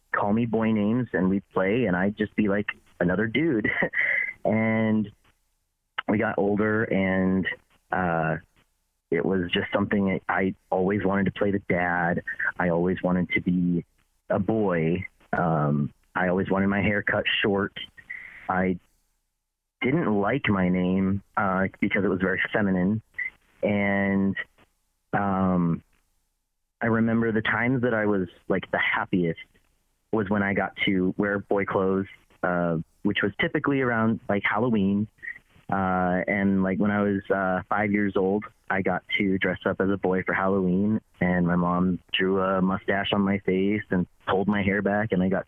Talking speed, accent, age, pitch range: 160 wpm, American, 30-49, 90-110 Hz